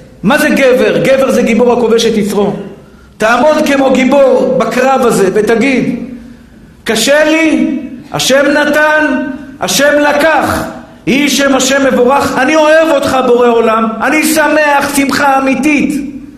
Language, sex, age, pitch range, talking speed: Hebrew, male, 50-69, 230-280 Hz, 125 wpm